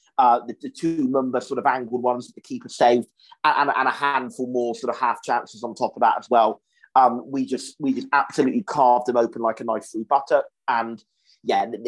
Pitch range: 125-150 Hz